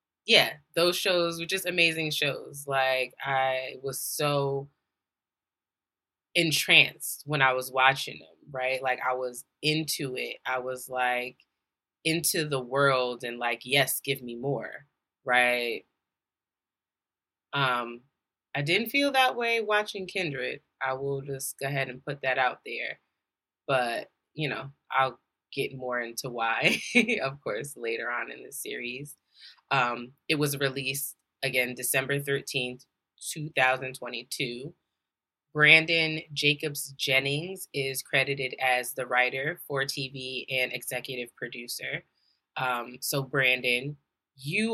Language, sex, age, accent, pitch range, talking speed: English, female, 20-39, American, 130-160 Hz, 125 wpm